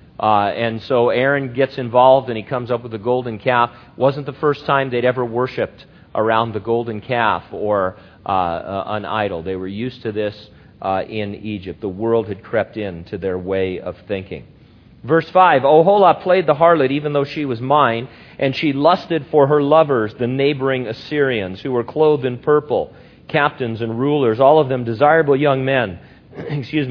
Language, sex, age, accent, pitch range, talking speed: English, male, 40-59, American, 120-155 Hz, 185 wpm